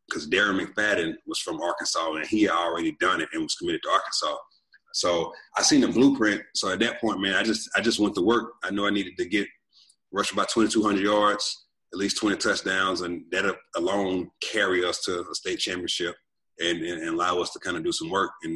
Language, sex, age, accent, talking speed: English, male, 30-49, American, 225 wpm